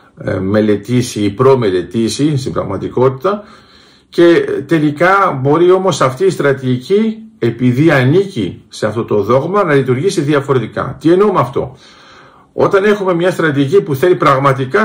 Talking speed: 135 wpm